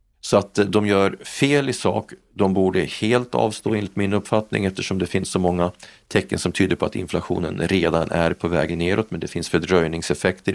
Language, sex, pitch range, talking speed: Swedish, male, 85-105 Hz, 195 wpm